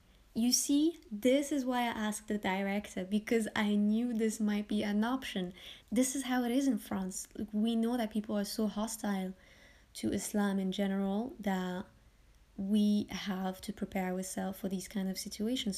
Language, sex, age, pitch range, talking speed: English, female, 20-39, 195-225 Hz, 175 wpm